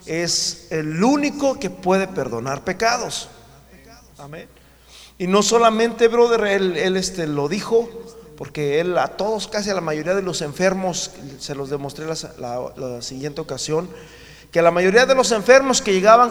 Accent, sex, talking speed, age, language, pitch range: Mexican, male, 160 wpm, 40-59, Spanish, 175-230 Hz